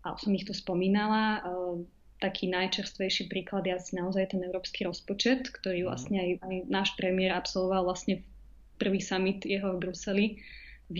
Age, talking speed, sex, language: 20-39, 155 wpm, female, Slovak